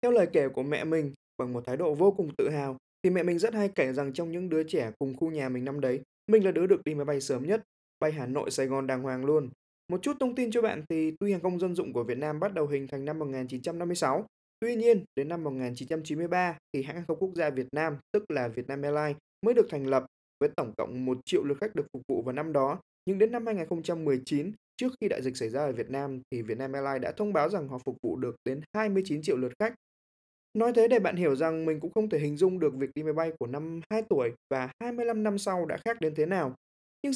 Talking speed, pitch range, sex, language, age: 265 wpm, 135-210 Hz, male, Vietnamese, 20-39